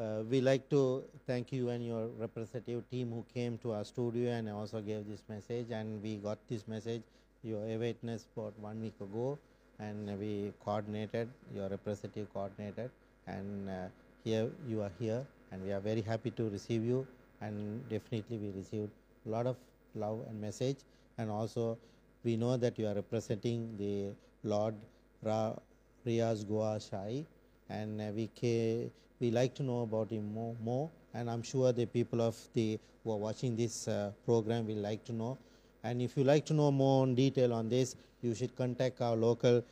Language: Urdu